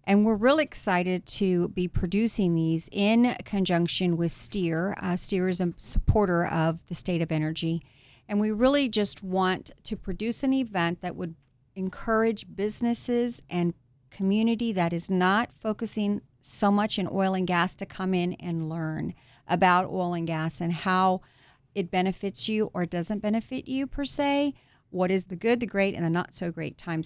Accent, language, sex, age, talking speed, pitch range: American, English, female, 40-59, 175 wpm, 165-200 Hz